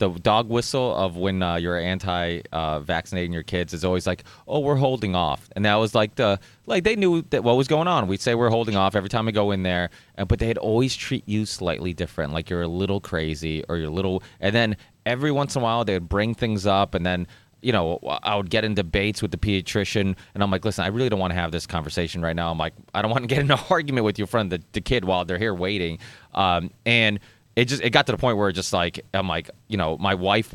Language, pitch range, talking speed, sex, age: English, 90-120 Hz, 265 wpm, male, 30-49